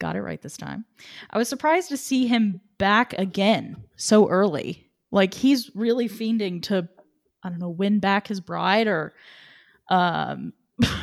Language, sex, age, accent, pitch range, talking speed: English, female, 10-29, American, 185-250 Hz, 160 wpm